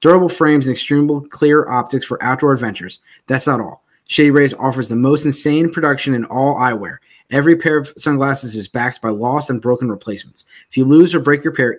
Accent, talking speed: American, 205 wpm